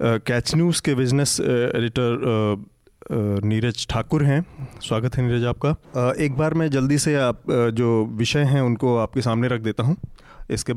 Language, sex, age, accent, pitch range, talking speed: Hindi, male, 30-49, native, 115-130 Hz, 155 wpm